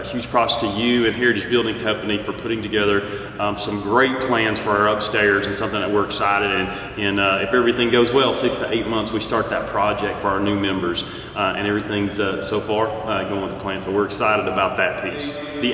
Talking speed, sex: 225 wpm, male